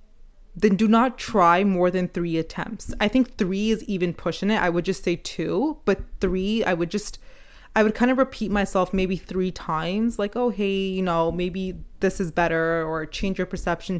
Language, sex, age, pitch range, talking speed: English, female, 20-39, 175-215 Hz, 200 wpm